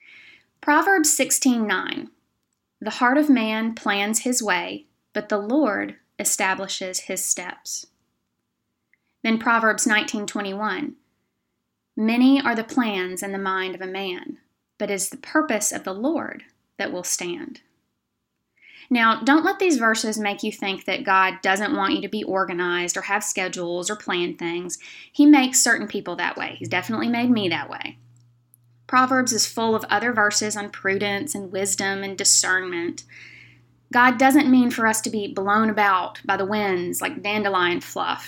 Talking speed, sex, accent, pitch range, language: 155 wpm, female, American, 190-260 Hz, English